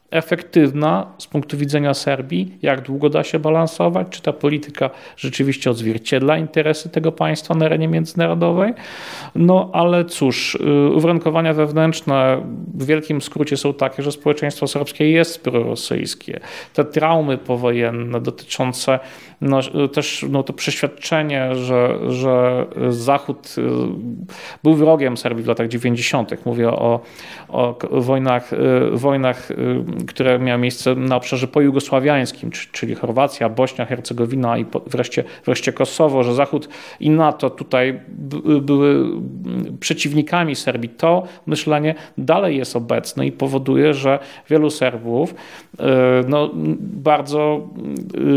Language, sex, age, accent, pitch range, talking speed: Polish, male, 40-59, native, 125-155 Hz, 115 wpm